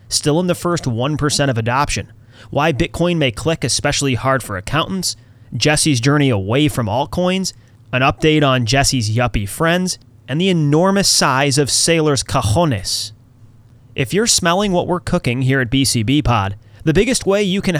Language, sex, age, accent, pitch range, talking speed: English, male, 30-49, American, 120-170 Hz, 160 wpm